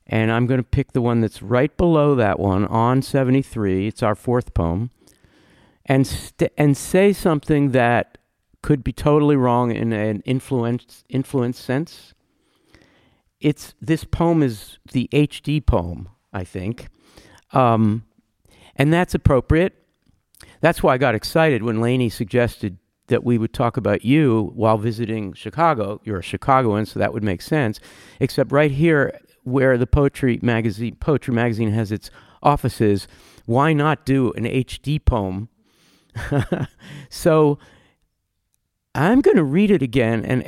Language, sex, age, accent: English, male, 50-69, American